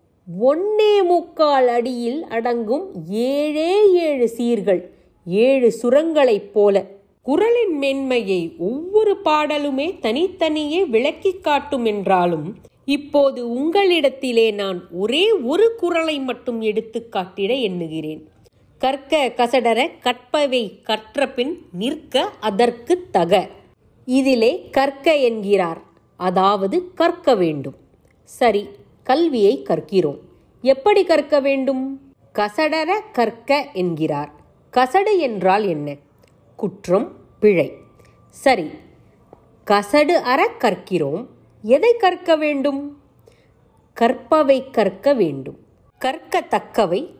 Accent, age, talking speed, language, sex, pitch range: native, 30-49, 80 wpm, Tamil, female, 205-315 Hz